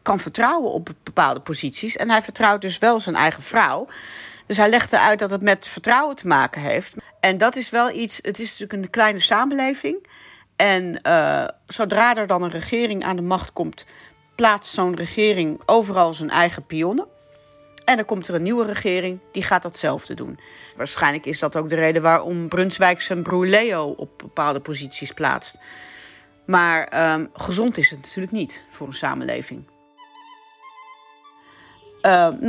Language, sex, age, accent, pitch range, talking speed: Dutch, female, 40-59, Dutch, 155-210 Hz, 165 wpm